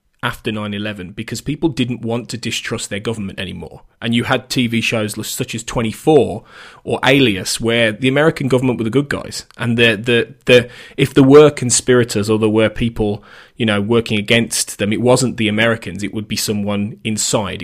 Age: 20-39